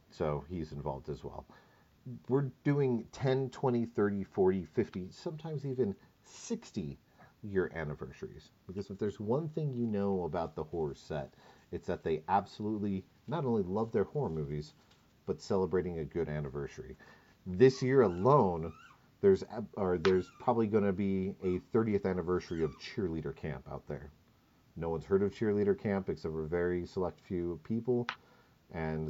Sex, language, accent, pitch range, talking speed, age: male, English, American, 85-125 Hz, 155 wpm, 40-59